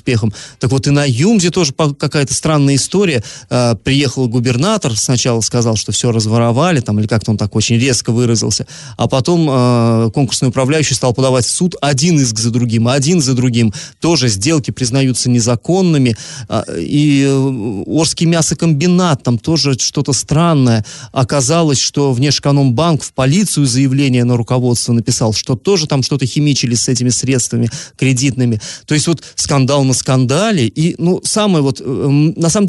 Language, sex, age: Russian, male, 30-49